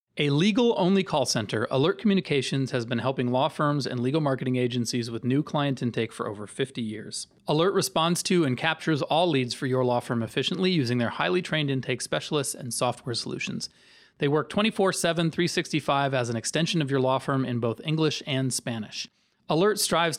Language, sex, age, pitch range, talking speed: English, male, 30-49, 125-160 Hz, 185 wpm